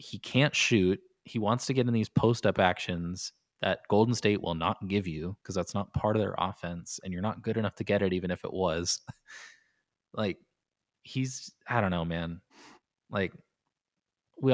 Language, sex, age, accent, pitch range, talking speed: English, male, 20-39, American, 90-110 Hz, 185 wpm